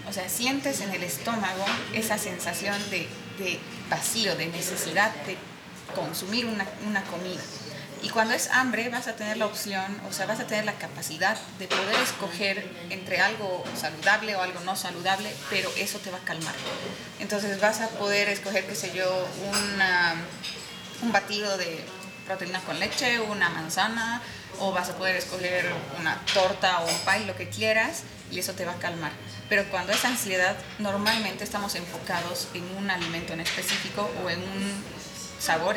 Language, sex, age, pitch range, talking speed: English, female, 30-49, 175-205 Hz, 170 wpm